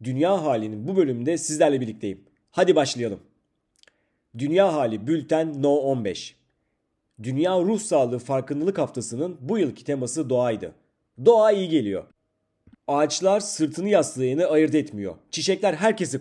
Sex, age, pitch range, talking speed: male, 40-59, 130-185 Hz, 120 wpm